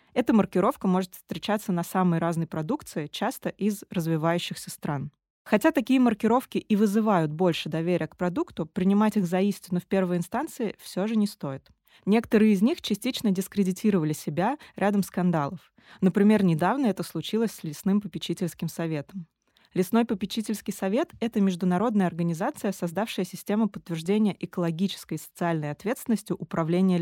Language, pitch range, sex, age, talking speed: Russian, 170-210 Hz, female, 20-39, 140 wpm